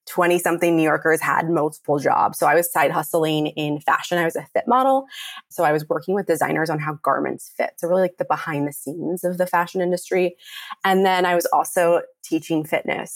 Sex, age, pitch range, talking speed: female, 20-39, 155-190 Hz, 210 wpm